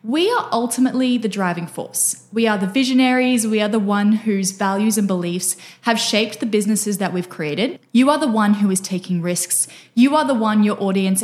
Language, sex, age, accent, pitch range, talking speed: English, female, 10-29, Australian, 185-245 Hz, 210 wpm